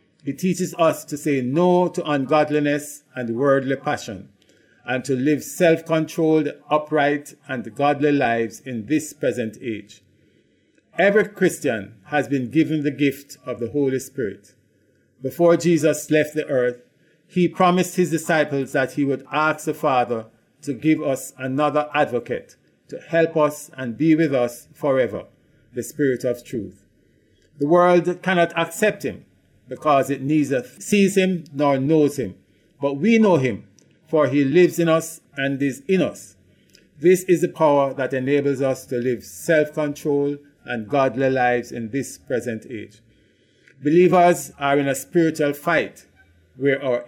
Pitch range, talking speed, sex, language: 130-160 Hz, 150 wpm, male, English